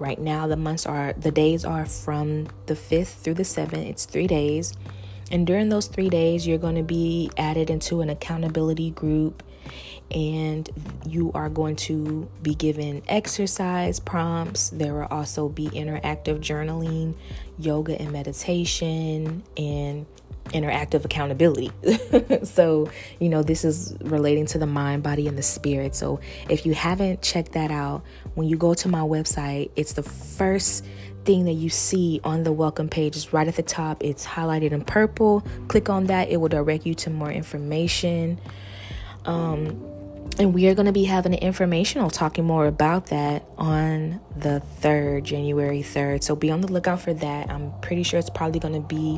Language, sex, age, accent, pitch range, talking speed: English, female, 20-39, American, 145-165 Hz, 175 wpm